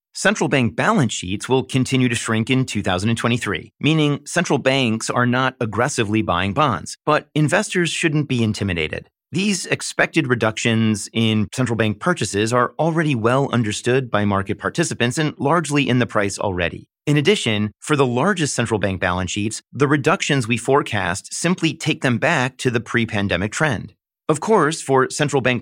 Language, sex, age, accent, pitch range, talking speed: English, male, 30-49, American, 110-145 Hz, 160 wpm